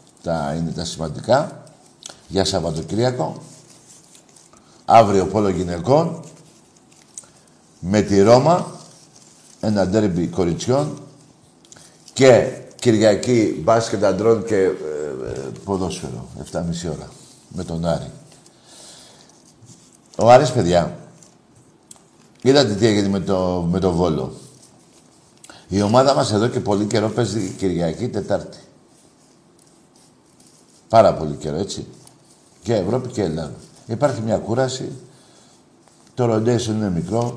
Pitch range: 90-130 Hz